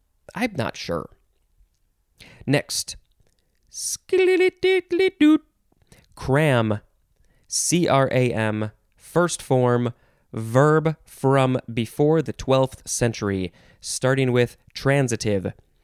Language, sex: English, male